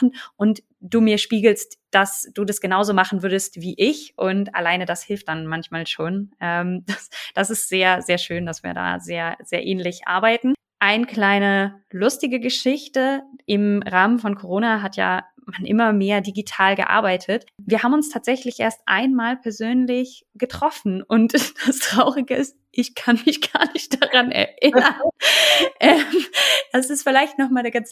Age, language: 20-39, German